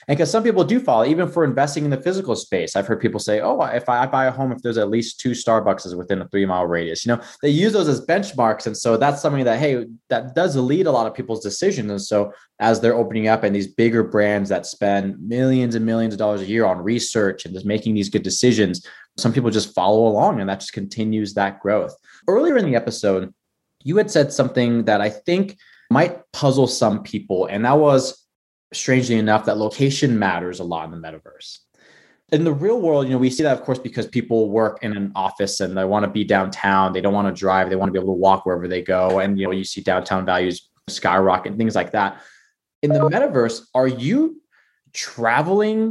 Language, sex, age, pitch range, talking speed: English, male, 20-39, 100-135 Hz, 230 wpm